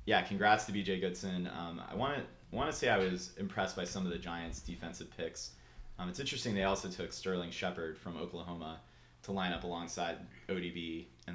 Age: 30-49